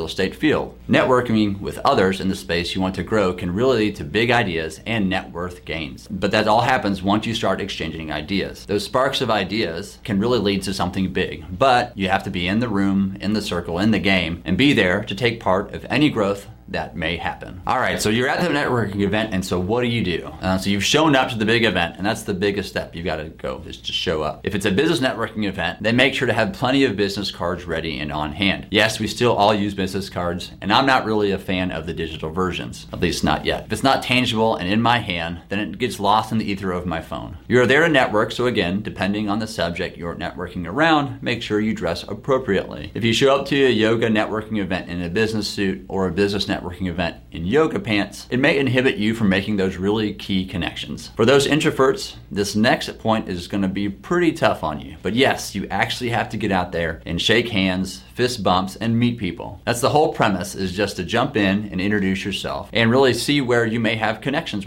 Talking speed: 240 wpm